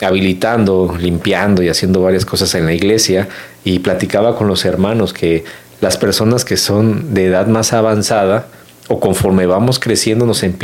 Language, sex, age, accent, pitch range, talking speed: Spanish, male, 40-59, Mexican, 90-115 Hz, 160 wpm